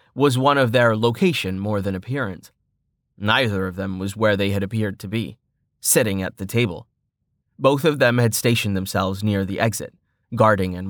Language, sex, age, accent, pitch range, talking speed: English, male, 20-39, American, 100-120 Hz, 180 wpm